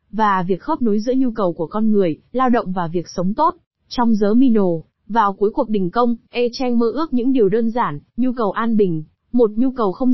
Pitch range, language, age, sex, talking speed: 200-250 Hz, Vietnamese, 20-39, female, 230 wpm